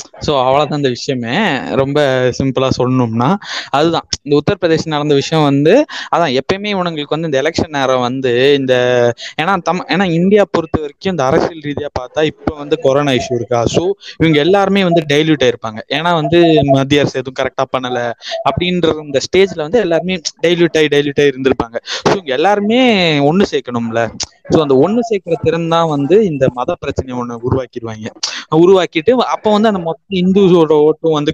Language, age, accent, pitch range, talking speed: Tamil, 20-39, native, 130-170 Hz, 155 wpm